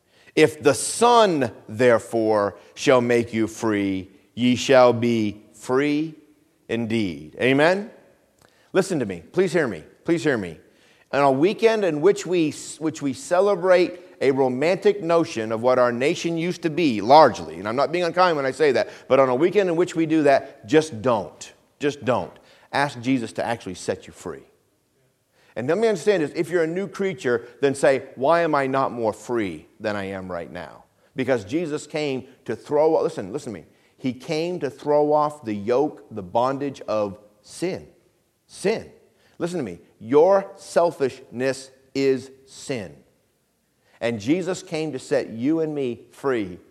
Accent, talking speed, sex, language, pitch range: American, 170 wpm, male, English, 120-170 Hz